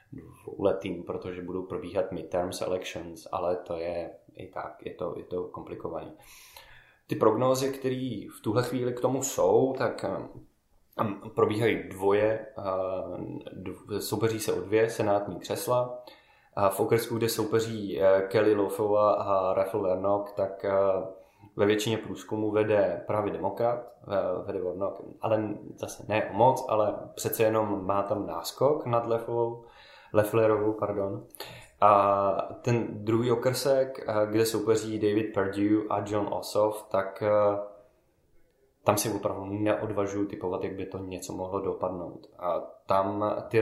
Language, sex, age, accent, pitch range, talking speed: Czech, male, 20-39, native, 100-110 Hz, 140 wpm